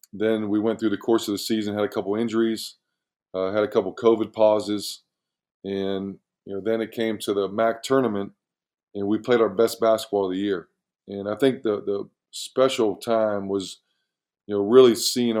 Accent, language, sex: American, English, male